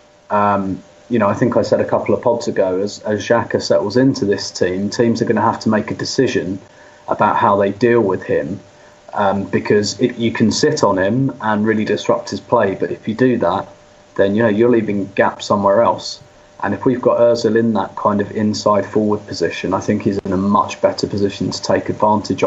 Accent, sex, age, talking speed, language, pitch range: British, male, 30-49, 220 wpm, English, 100-115 Hz